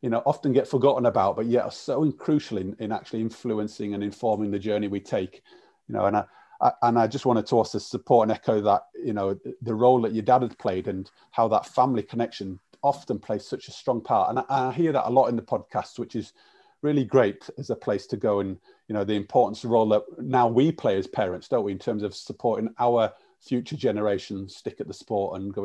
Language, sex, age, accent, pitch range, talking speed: English, male, 40-59, British, 110-140 Hz, 240 wpm